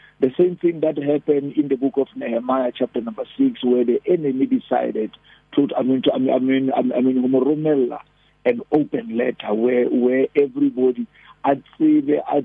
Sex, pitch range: male, 130-180 Hz